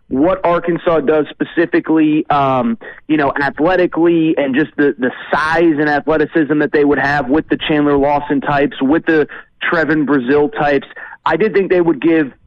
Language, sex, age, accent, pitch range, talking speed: English, male, 30-49, American, 145-175 Hz, 170 wpm